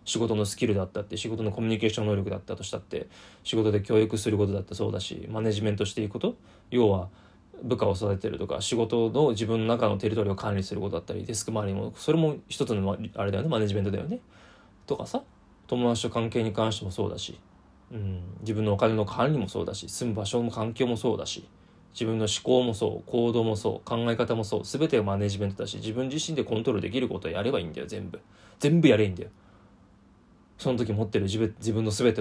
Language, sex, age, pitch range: Japanese, male, 20-39, 100-120 Hz